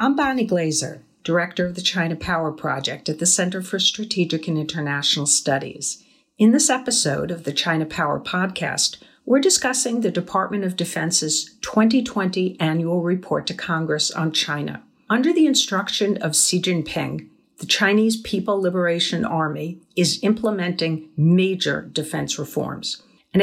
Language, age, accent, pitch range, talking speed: English, 50-69, American, 160-200 Hz, 140 wpm